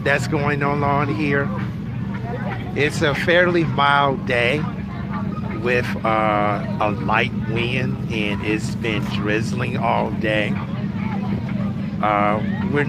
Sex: male